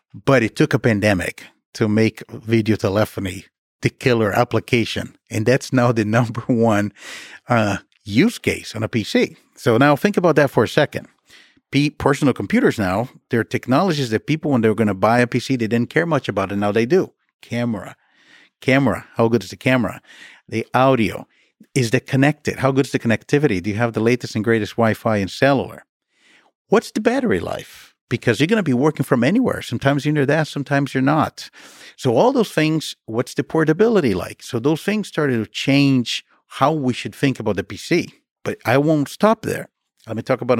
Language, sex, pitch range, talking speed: English, male, 110-140 Hz, 195 wpm